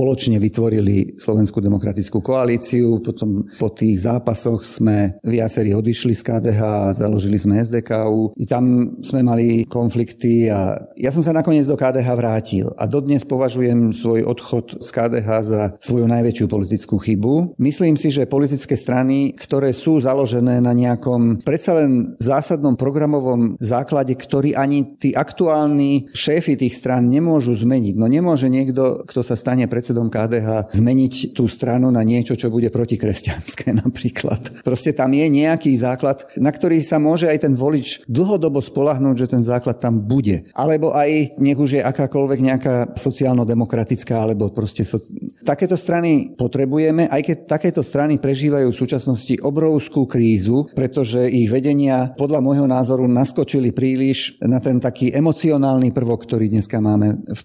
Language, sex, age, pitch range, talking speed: Slovak, male, 50-69, 115-140 Hz, 150 wpm